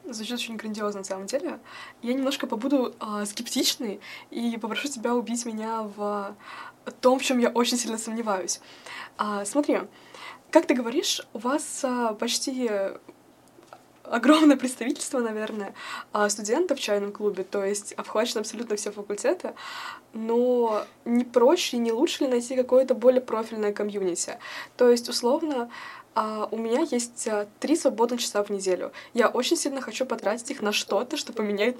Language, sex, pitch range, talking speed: Russian, female, 210-255 Hz, 145 wpm